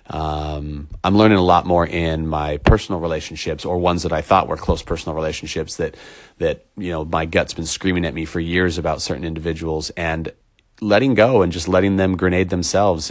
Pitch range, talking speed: 80-95 Hz, 195 wpm